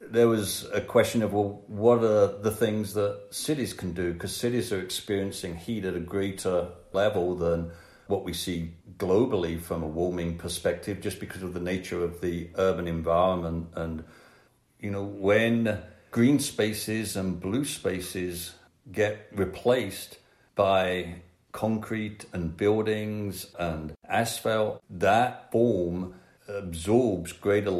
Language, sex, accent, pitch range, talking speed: English, male, British, 85-105 Hz, 135 wpm